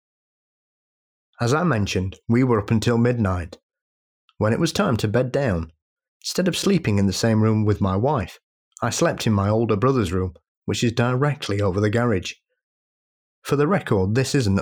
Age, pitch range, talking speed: 30-49, 95-140 Hz, 175 wpm